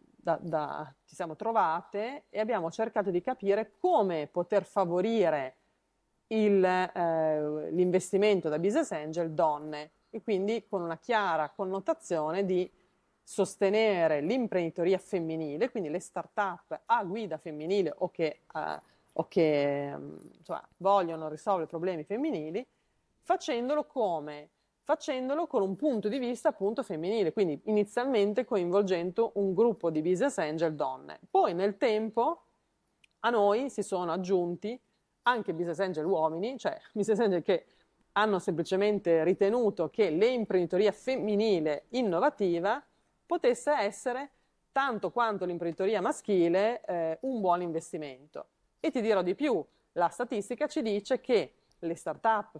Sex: female